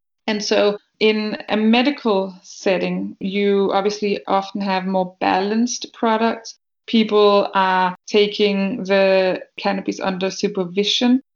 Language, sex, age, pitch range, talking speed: English, female, 20-39, 185-205 Hz, 105 wpm